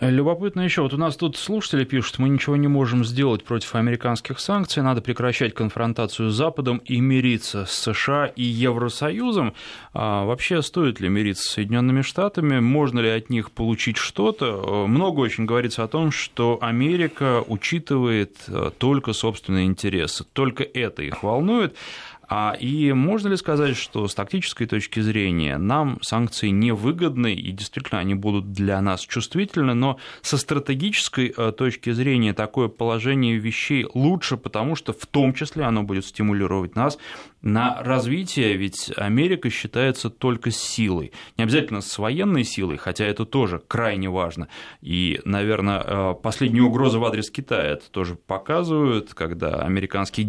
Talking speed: 150 wpm